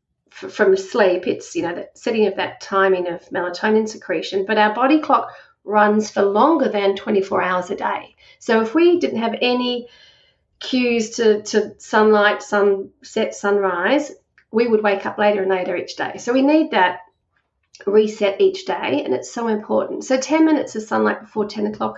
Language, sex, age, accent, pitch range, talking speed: English, female, 40-59, Australian, 195-245 Hz, 175 wpm